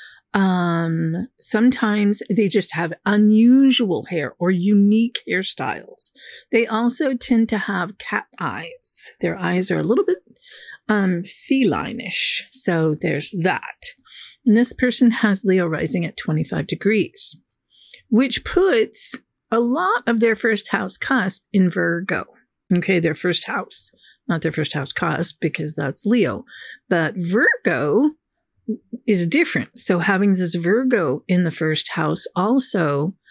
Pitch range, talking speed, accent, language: 180-235 Hz, 130 wpm, American, English